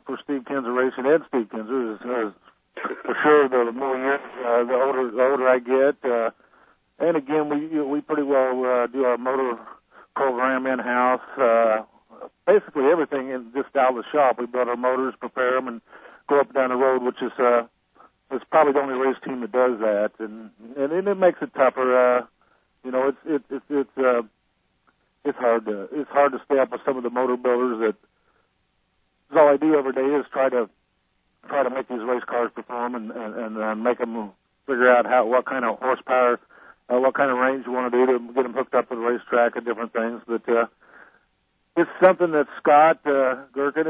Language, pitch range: English, 120-135 Hz